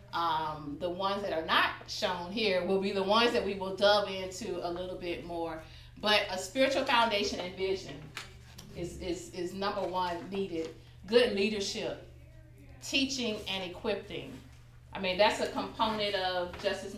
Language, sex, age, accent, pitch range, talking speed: English, female, 30-49, American, 180-235 Hz, 160 wpm